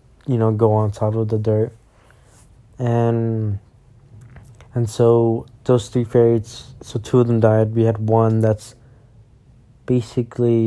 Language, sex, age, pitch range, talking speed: English, male, 20-39, 110-120 Hz, 135 wpm